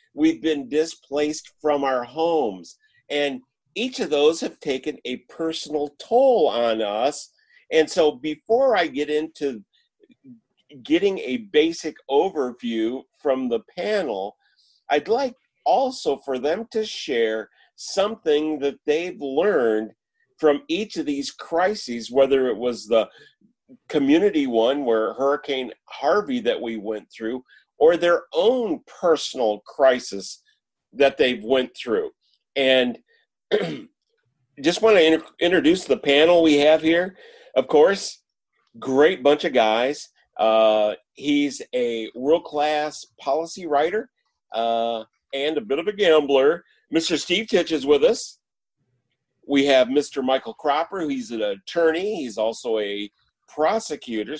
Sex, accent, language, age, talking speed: male, American, English, 40-59, 125 wpm